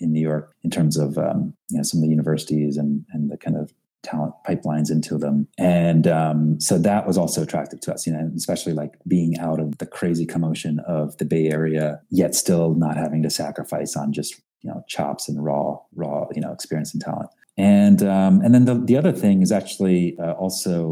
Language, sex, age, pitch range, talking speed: English, male, 30-49, 75-85 Hz, 220 wpm